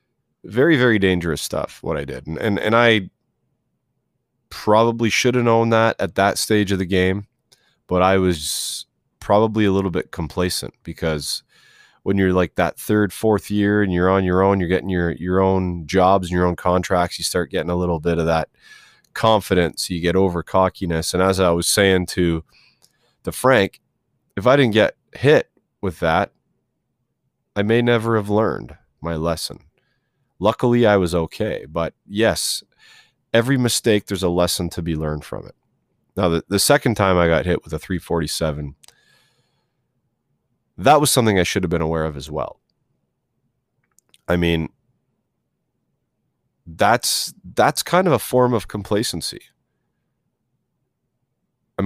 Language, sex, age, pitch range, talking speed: English, male, 30-49, 85-110 Hz, 160 wpm